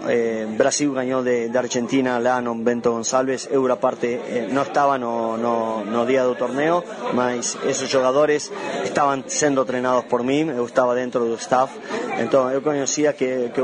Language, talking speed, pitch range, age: Portuguese, 165 wpm, 125-140 Hz, 20-39